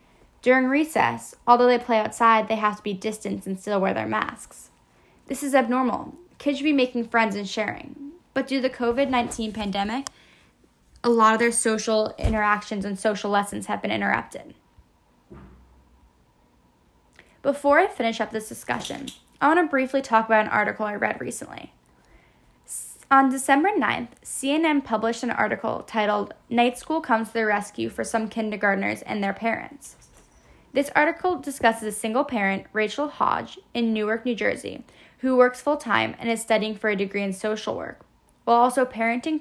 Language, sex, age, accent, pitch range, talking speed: English, female, 10-29, American, 205-260 Hz, 165 wpm